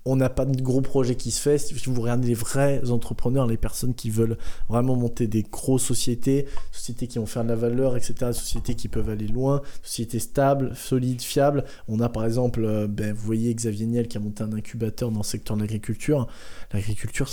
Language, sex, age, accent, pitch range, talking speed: French, male, 20-39, French, 115-135 Hz, 210 wpm